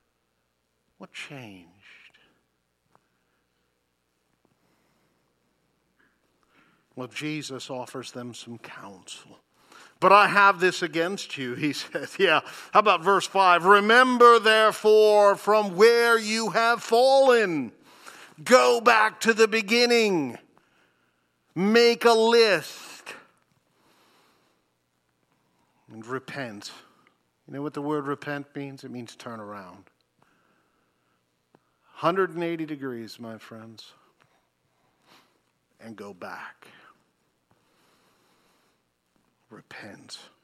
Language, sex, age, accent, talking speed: English, male, 50-69, American, 85 wpm